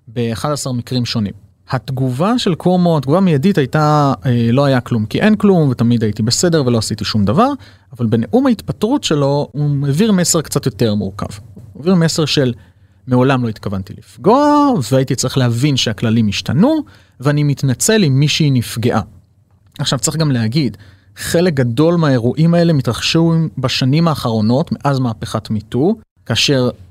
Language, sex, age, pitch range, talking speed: Hebrew, male, 30-49, 110-160 Hz, 145 wpm